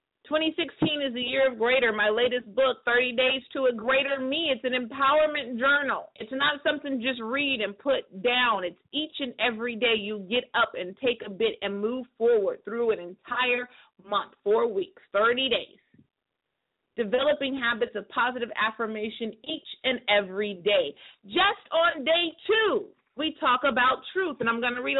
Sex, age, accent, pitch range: female, 40-59, American, 230-295 Hz